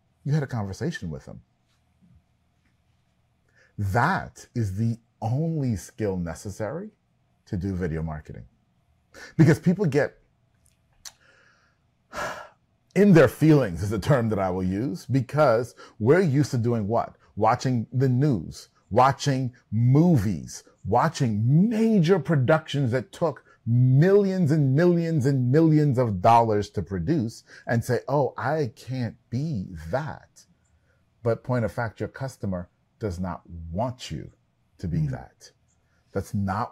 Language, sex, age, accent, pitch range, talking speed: English, male, 40-59, American, 95-135 Hz, 125 wpm